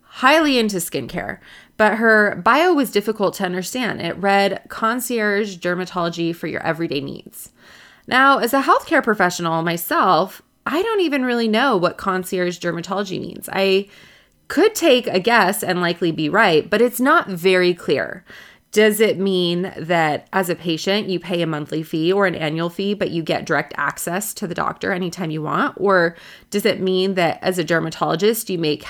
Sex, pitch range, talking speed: female, 175-235 Hz, 175 wpm